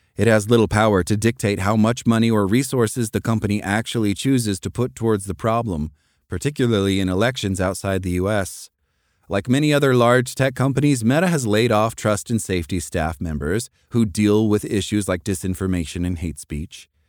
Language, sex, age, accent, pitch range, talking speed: English, male, 30-49, American, 100-130 Hz, 175 wpm